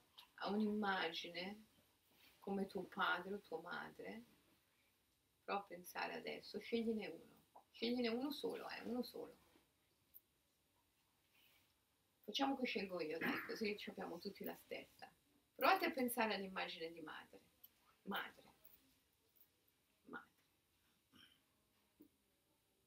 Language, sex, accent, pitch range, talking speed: Italian, female, native, 205-285 Hz, 100 wpm